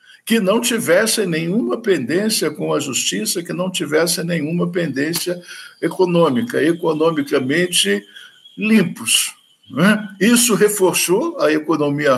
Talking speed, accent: 105 wpm, Brazilian